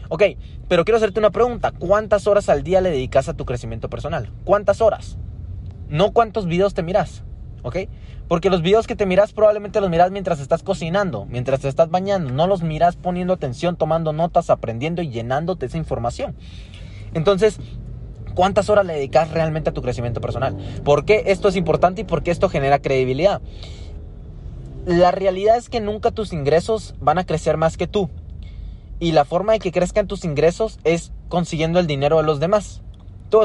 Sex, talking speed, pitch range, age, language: male, 180 wpm, 135-200 Hz, 20-39, Spanish